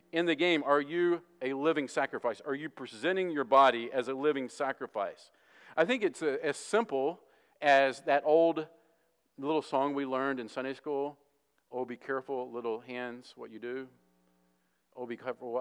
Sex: male